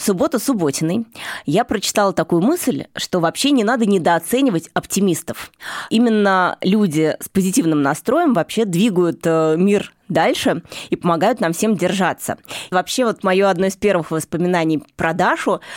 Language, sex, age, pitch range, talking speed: Russian, female, 20-39, 170-210 Hz, 135 wpm